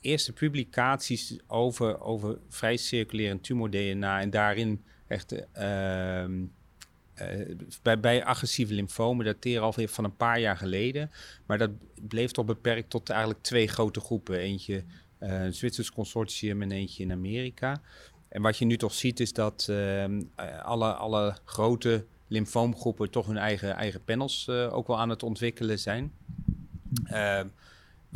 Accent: Dutch